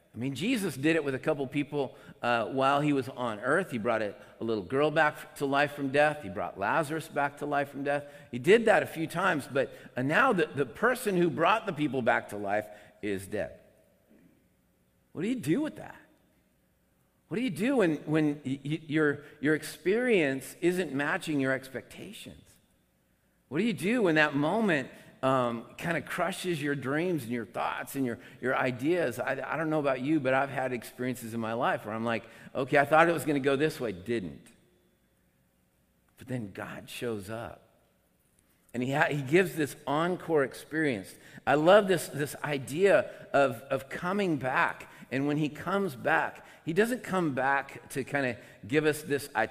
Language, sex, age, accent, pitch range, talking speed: English, male, 50-69, American, 120-155 Hz, 195 wpm